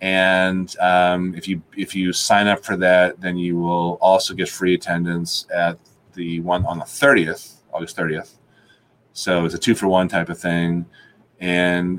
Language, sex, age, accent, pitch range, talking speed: English, male, 30-49, American, 90-105 Hz, 165 wpm